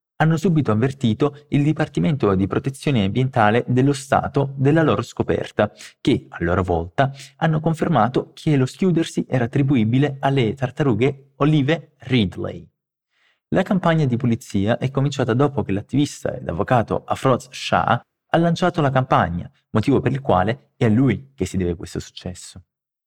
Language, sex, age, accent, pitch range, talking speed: Portuguese, male, 30-49, Italian, 105-145 Hz, 150 wpm